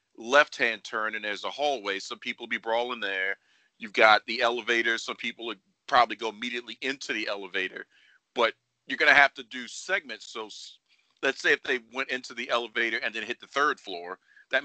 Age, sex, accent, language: 40-59, male, American, English